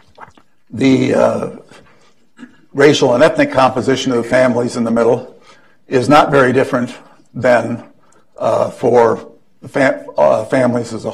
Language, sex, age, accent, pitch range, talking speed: English, male, 60-79, American, 115-135 Hz, 135 wpm